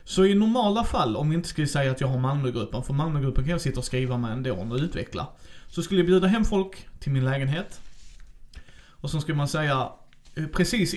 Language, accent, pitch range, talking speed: Swedish, native, 125-175 Hz, 220 wpm